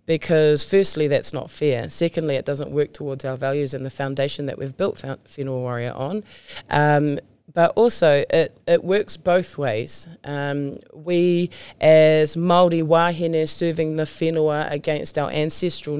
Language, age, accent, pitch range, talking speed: English, 20-39, Australian, 145-170 Hz, 150 wpm